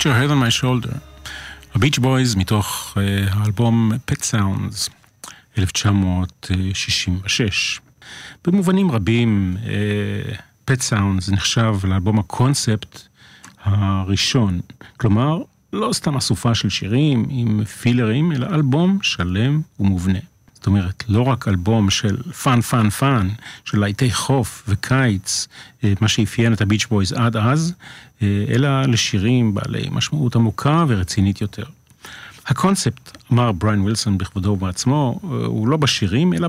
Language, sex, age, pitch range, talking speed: Hebrew, male, 40-59, 105-130 Hz, 110 wpm